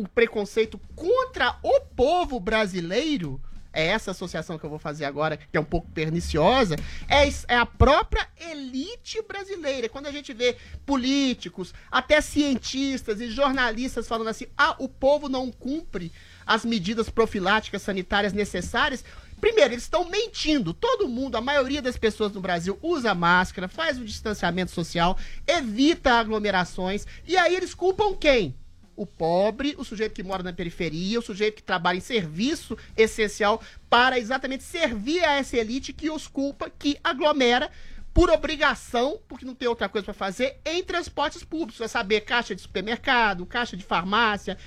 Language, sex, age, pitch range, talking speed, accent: Portuguese, male, 30-49, 215-305 Hz, 155 wpm, Brazilian